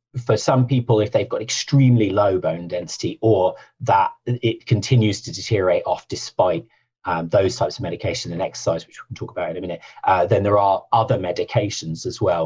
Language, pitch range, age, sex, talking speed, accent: English, 95-120 Hz, 30-49, male, 195 wpm, British